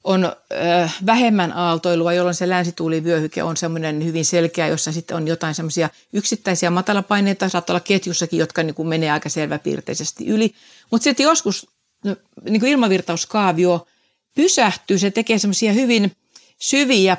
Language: Finnish